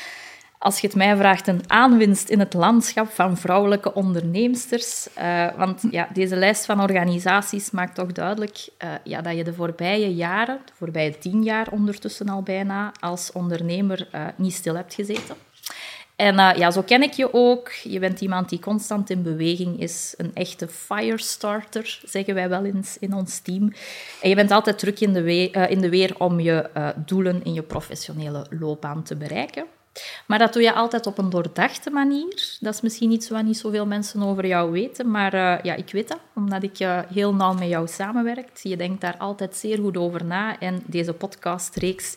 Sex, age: female, 20-39